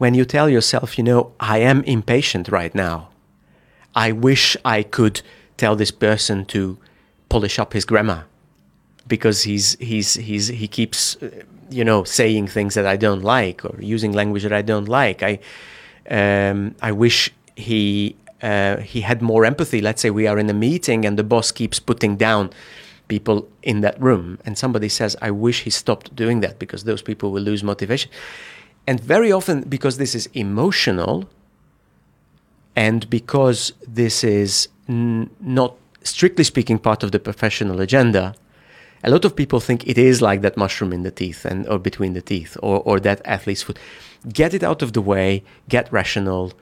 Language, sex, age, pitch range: Chinese, male, 30-49, 100-120 Hz